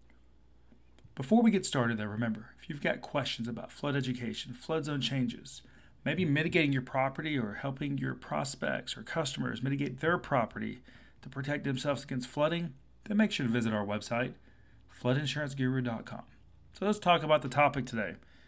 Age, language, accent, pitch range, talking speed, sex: 40-59, English, American, 125-165 Hz, 160 wpm, male